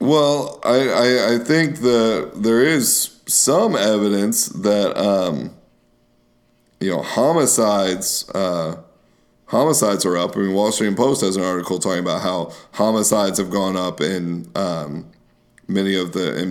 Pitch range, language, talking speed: 90-105 Hz, English, 145 wpm